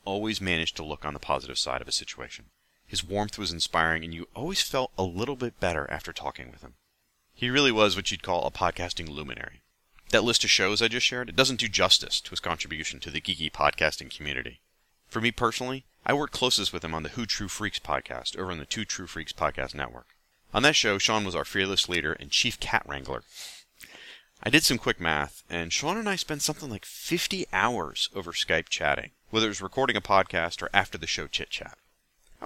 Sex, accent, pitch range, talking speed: male, American, 80-120 Hz, 215 wpm